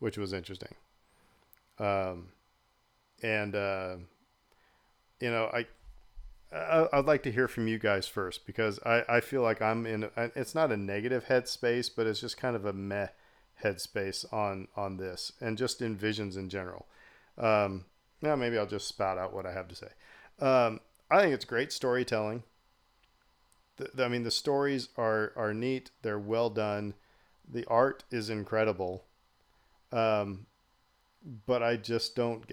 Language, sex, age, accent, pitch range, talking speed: English, male, 40-59, American, 100-120 Hz, 160 wpm